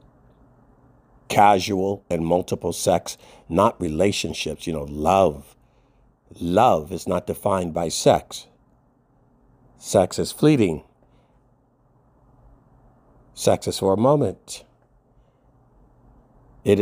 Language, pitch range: English, 95-130 Hz